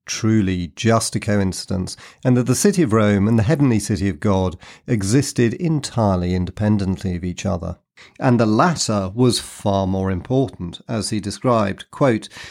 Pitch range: 100-130 Hz